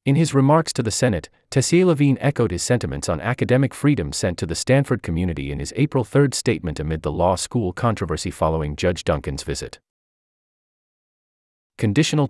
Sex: male